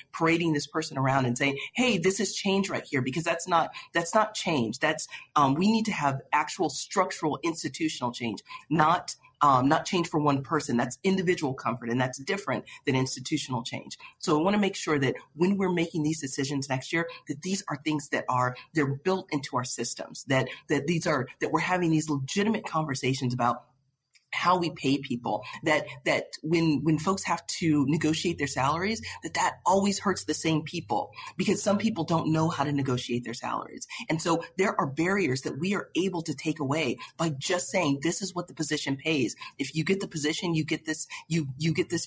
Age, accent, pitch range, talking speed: 40-59, American, 140-180 Hz, 205 wpm